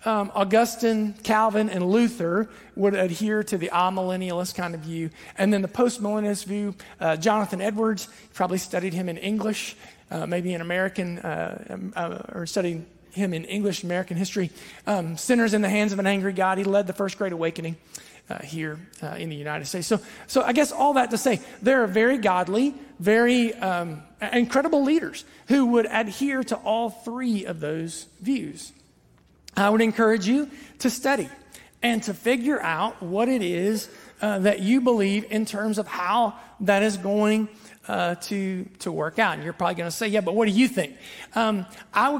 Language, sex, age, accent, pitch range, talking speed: English, male, 40-59, American, 185-230 Hz, 185 wpm